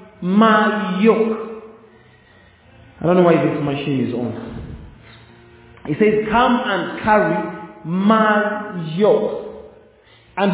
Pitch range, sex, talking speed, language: 125-210 Hz, male, 100 wpm, English